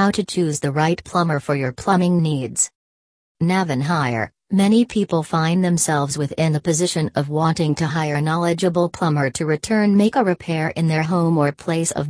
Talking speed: 185 wpm